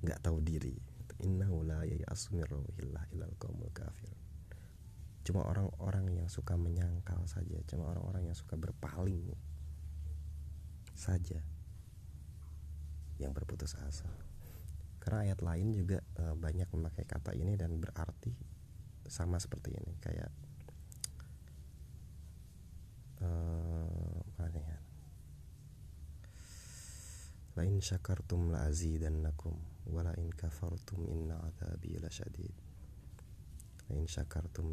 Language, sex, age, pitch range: Indonesian, male, 30-49, 80-90 Hz